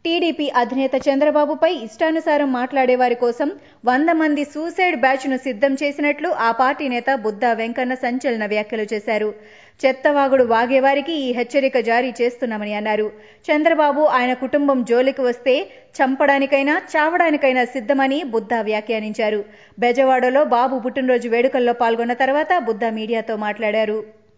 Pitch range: 235-290 Hz